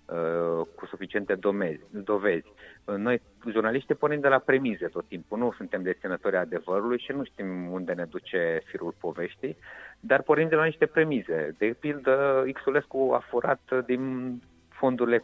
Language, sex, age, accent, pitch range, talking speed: Romanian, male, 30-49, native, 105-140 Hz, 145 wpm